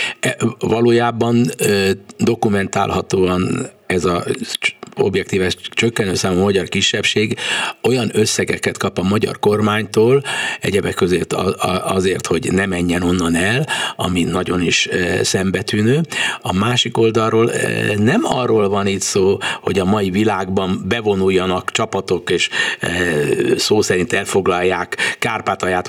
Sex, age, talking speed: male, 60-79, 120 wpm